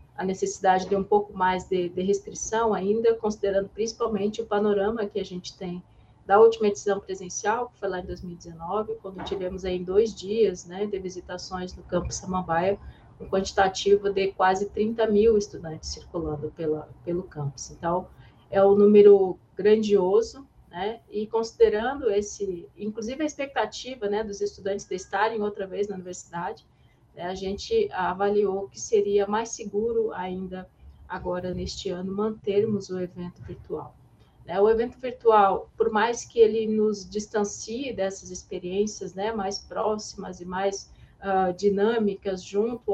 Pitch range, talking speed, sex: 185-220 Hz, 140 wpm, female